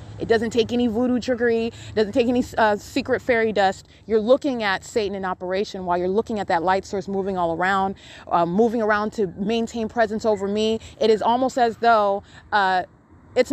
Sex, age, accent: female, 30-49, American